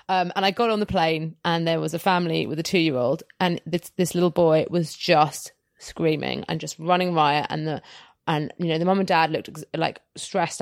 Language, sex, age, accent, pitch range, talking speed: English, female, 30-49, British, 165-200 Hz, 225 wpm